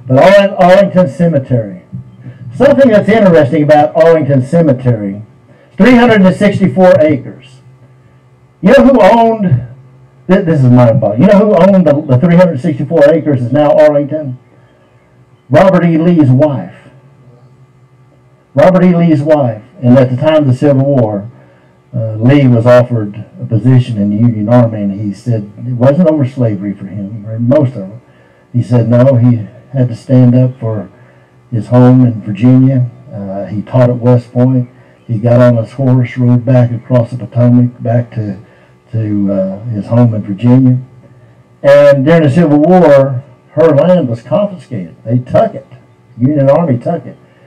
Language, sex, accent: English, male, American